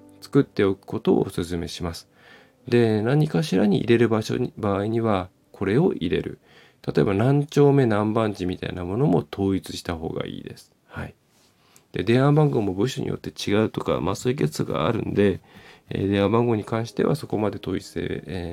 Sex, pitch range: male, 90-120 Hz